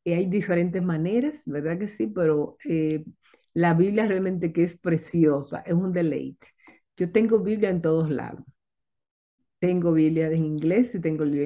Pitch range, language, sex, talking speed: 160-205 Hz, Spanish, female, 160 wpm